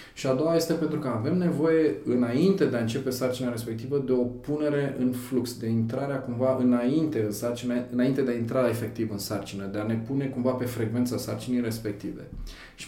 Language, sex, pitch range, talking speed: Romanian, male, 115-135 Hz, 195 wpm